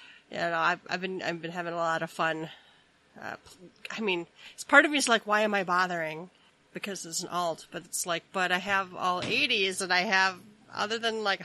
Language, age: English, 30-49